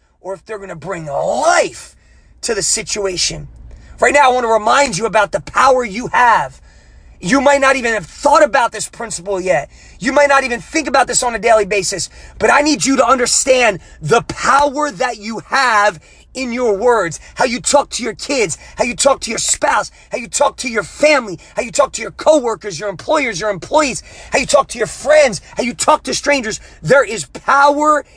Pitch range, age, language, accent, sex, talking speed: 205-290 Hz, 30-49, English, American, male, 205 wpm